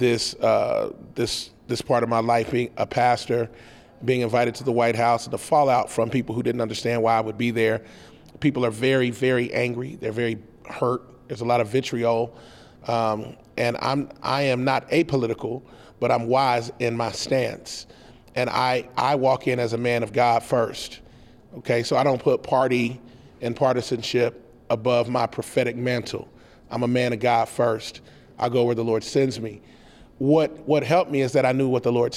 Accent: American